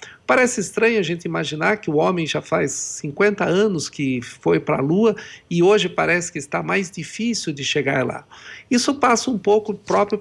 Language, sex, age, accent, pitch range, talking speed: Portuguese, male, 50-69, Brazilian, 155-205 Hz, 190 wpm